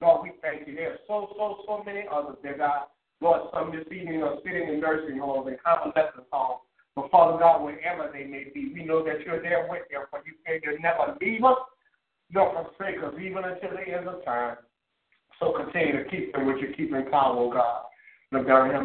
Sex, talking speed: male, 230 wpm